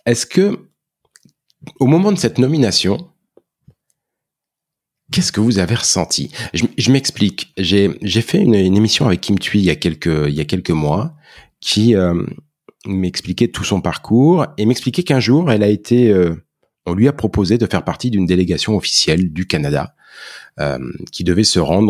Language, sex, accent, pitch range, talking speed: French, male, French, 90-130 Hz, 175 wpm